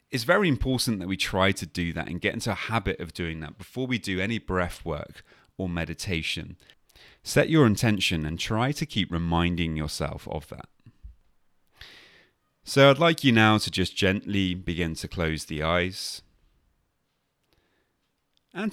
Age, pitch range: 30-49, 80-105 Hz